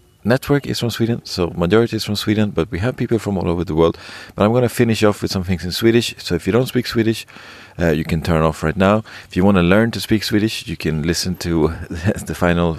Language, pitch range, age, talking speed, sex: English, 80-110 Hz, 40-59, 265 wpm, male